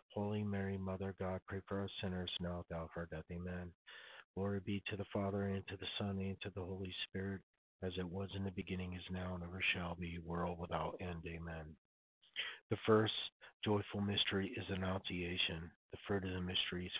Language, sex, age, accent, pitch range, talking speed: English, male, 50-69, American, 85-100 Hz, 195 wpm